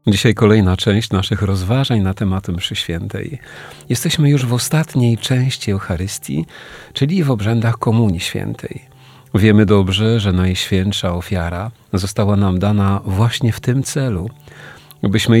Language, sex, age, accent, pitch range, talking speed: Polish, male, 40-59, native, 100-125 Hz, 130 wpm